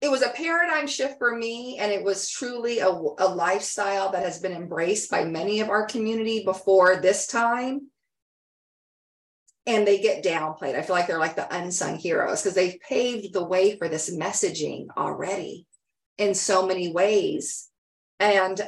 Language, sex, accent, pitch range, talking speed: English, female, American, 185-245 Hz, 165 wpm